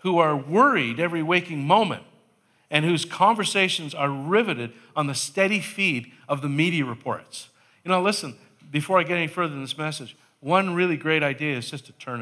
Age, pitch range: 50-69, 130-160 Hz